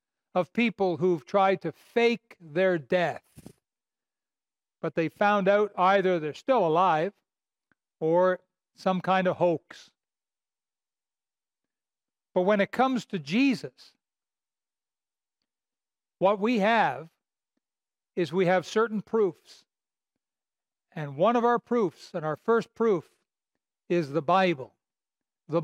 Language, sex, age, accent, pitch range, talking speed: English, male, 60-79, American, 180-230 Hz, 110 wpm